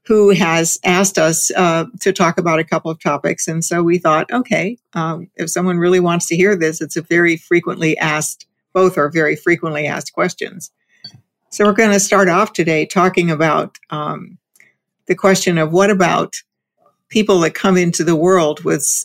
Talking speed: 185 wpm